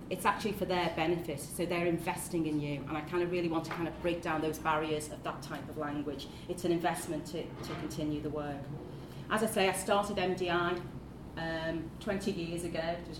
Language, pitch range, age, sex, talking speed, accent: English, 155-185 Hz, 30-49, female, 220 wpm, British